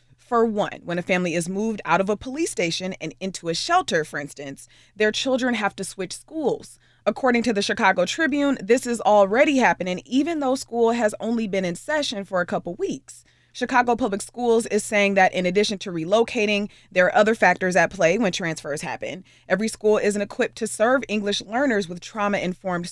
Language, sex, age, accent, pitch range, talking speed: English, female, 20-39, American, 175-235 Hz, 195 wpm